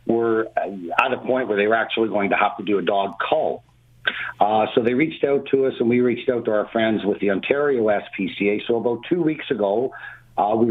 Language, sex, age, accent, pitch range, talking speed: English, male, 50-69, American, 100-120 Hz, 230 wpm